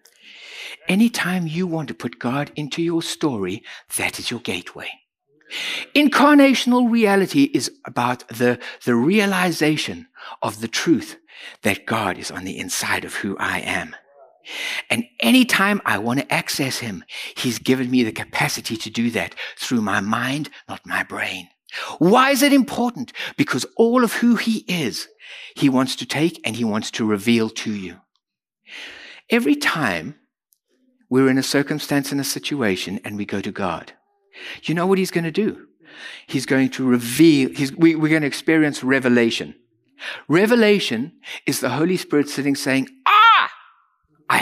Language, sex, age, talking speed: English, male, 60-79, 155 wpm